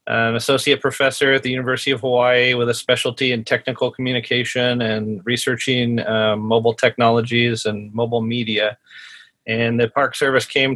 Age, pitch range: 40-59, 115-130 Hz